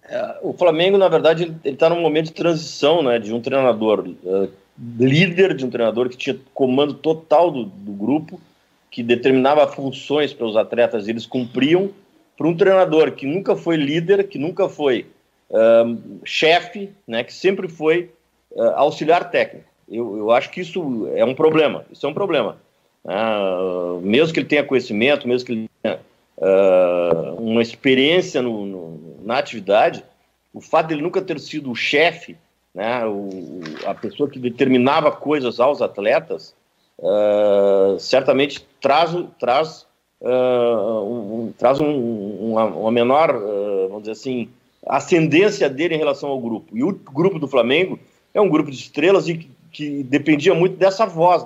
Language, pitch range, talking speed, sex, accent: Portuguese, 115-165 Hz, 155 wpm, male, Brazilian